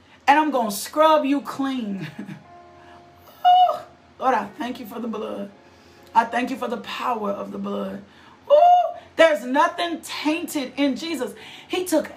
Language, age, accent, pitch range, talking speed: English, 40-59, American, 220-325 Hz, 160 wpm